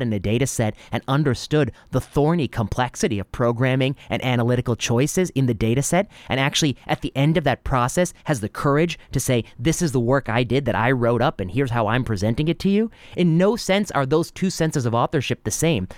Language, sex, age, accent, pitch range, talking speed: English, male, 30-49, American, 100-135 Hz, 225 wpm